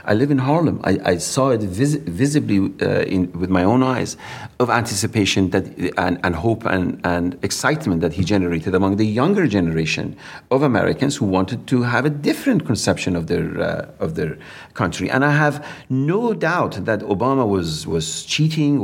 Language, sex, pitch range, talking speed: English, male, 100-150 Hz, 180 wpm